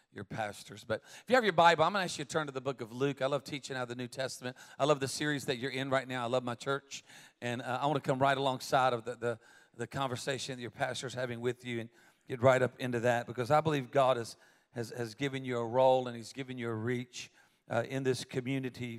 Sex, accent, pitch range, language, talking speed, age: male, American, 125-145 Hz, English, 275 wpm, 40-59